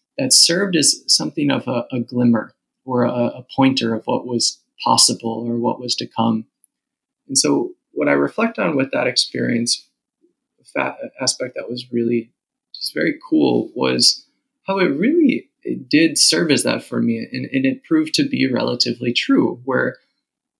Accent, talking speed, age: American, 165 wpm, 20-39